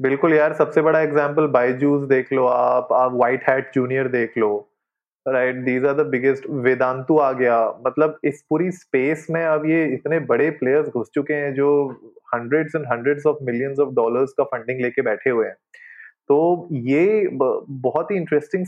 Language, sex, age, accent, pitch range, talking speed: Hindi, male, 20-39, native, 135-180 Hz, 175 wpm